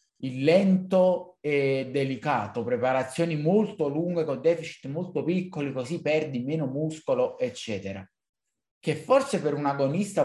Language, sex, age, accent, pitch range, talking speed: Italian, male, 20-39, native, 125-165 Hz, 125 wpm